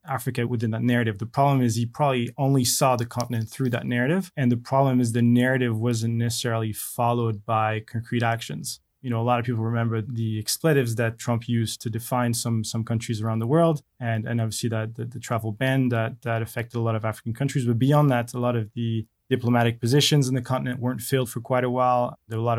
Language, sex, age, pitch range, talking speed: English, male, 20-39, 115-125 Hz, 230 wpm